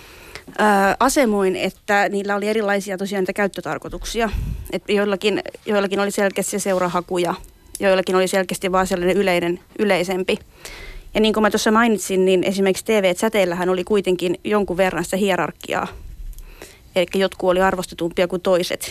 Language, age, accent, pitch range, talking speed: Finnish, 30-49, native, 185-210 Hz, 125 wpm